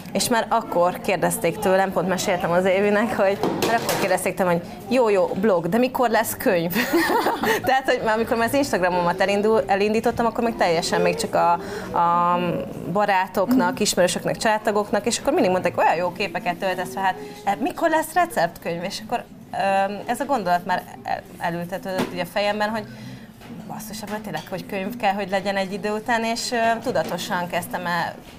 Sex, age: female, 30-49